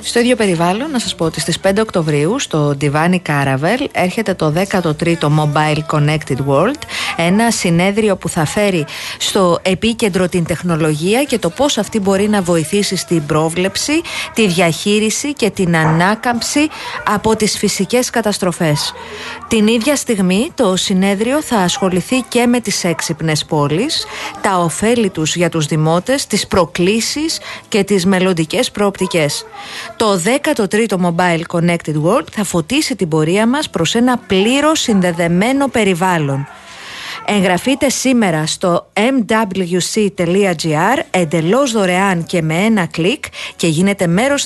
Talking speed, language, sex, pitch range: 130 wpm, Greek, female, 170-230 Hz